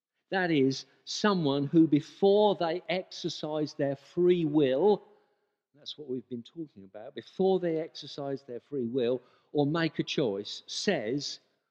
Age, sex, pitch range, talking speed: 50-69, male, 115-155 Hz, 140 wpm